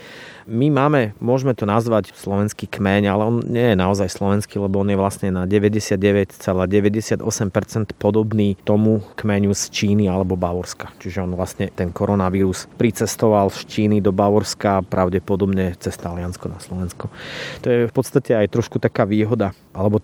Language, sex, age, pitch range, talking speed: Slovak, male, 30-49, 95-110 Hz, 150 wpm